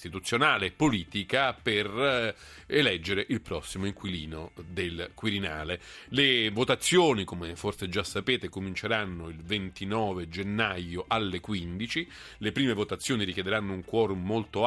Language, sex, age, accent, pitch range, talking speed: Italian, male, 40-59, native, 95-125 Hz, 120 wpm